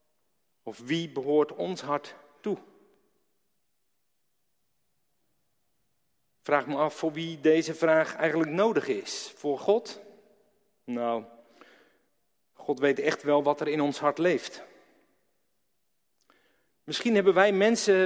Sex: male